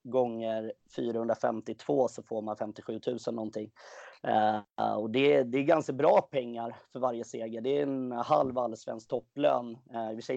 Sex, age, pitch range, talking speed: male, 30-49, 110-130 Hz, 170 wpm